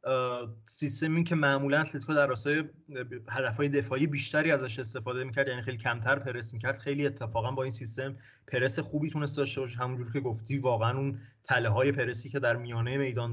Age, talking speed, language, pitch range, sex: 30-49, 170 wpm, English, 120-145 Hz, male